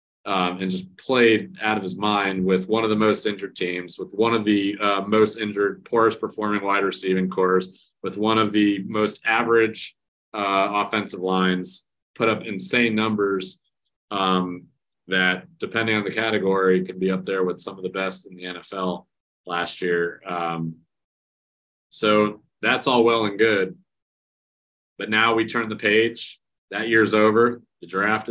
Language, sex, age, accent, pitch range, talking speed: English, male, 30-49, American, 95-115 Hz, 165 wpm